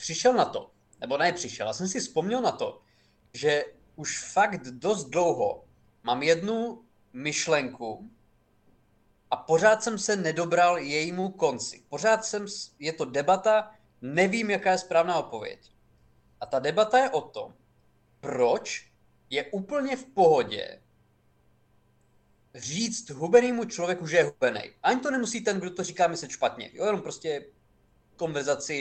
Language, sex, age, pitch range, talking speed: Czech, male, 20-39, 135-215 Hz, 140 wpm